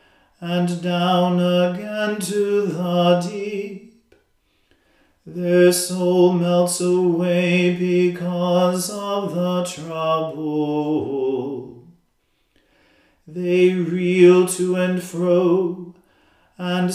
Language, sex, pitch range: English, male, 165-185 Hz